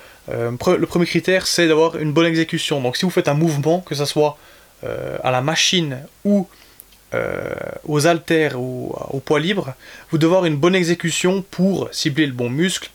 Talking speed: 190 wpm